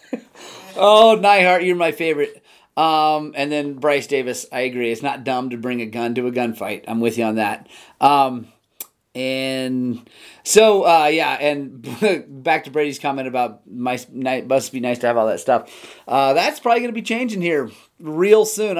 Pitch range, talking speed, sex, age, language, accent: 125-175 Hz, 180 wpm, male, 30-49, English, American